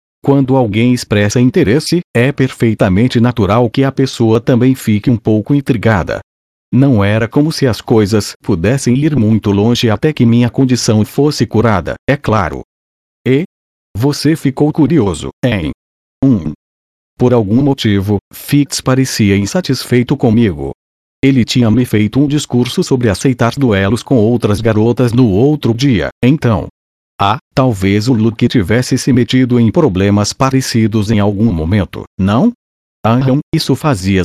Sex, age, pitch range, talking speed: male, 40-59, 105-135 Hz, 140 wpm